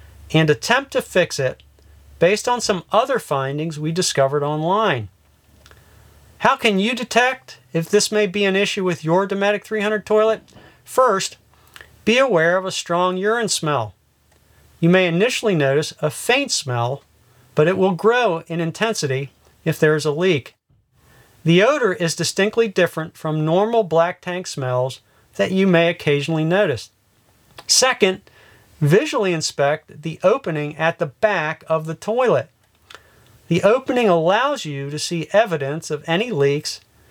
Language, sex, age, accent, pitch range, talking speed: English, male, 40-59, American, 135-195 Hz, 145 wpm